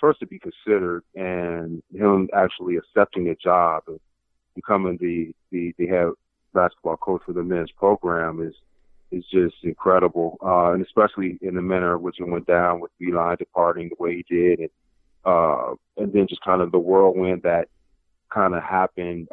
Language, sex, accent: English, male, American